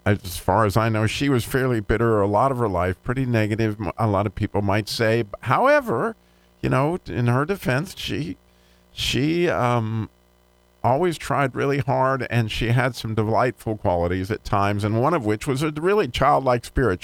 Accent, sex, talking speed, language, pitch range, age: American, male, 185 wpm, English, 95-135 Hz, 50-69